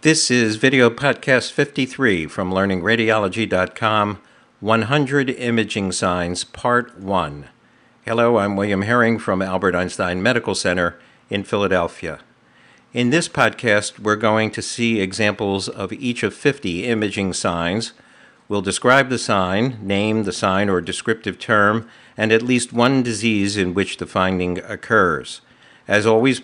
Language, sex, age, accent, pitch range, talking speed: English, male, 50-69, American, 95-120 Hz, 135 wpm